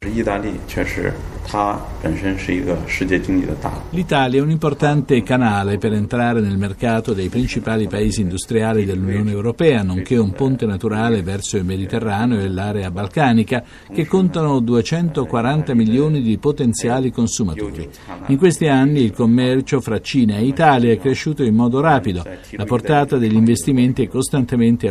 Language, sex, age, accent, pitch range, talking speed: Italian, male, 50-69, native, 100-135 Hz, 125 wpm